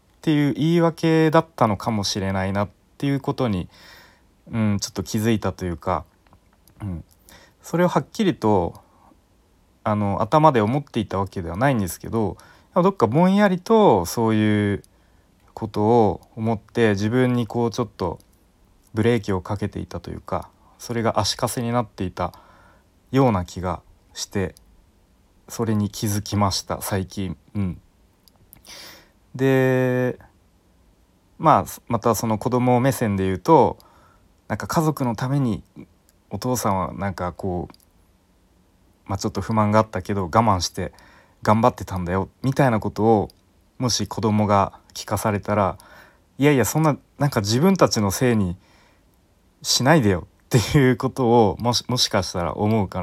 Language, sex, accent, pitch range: Japanese, male, native, 90-120 Hz